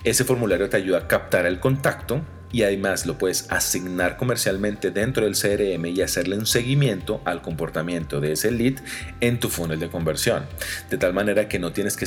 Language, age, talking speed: Spanish, 40-59, 190 wpm